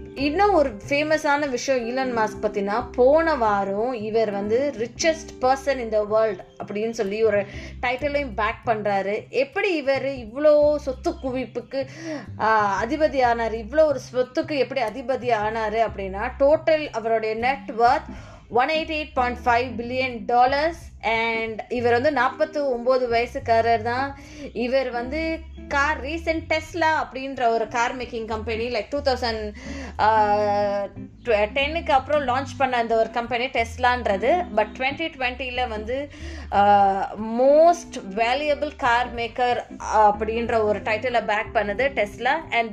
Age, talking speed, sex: 20-39, 120 wpm, female